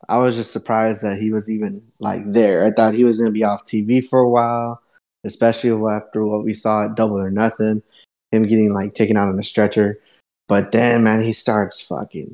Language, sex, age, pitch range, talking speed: English, male, 20-39, 105-125 Hz, 220 wpm